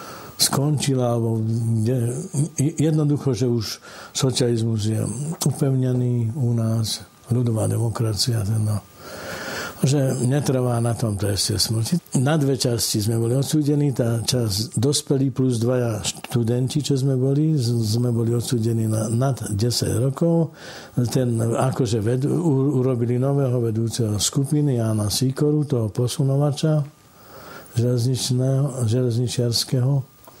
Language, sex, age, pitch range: Slovak, male, 60-79, 115-135 Hz